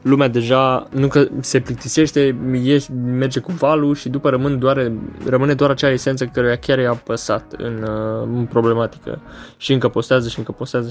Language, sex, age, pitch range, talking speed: Romanian, male, 20-39, 115-130 Hz, 160 wpm